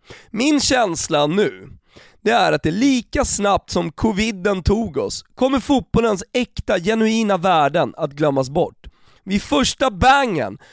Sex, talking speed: male, 135 wpm